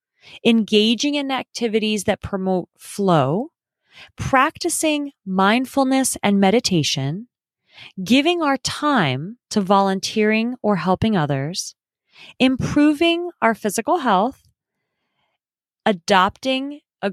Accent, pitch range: American, 190-280 Hz